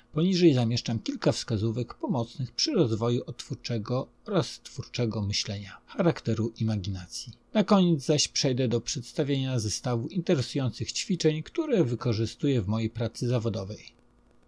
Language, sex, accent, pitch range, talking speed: Polish, male, native, 115-140 Hz, 115 wpm